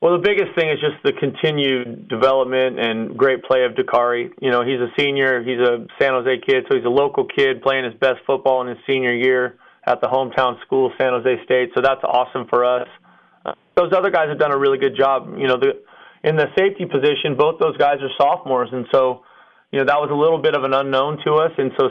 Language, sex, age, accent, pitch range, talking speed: English, male, 30-49, American, 130-145 Hz, 240 wpm